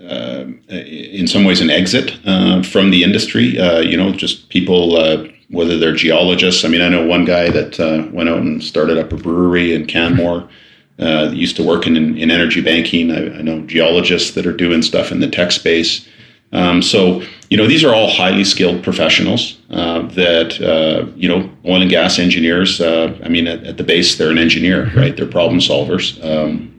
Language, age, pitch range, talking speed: English, 40-59, 80-90 Hz, 205 wpm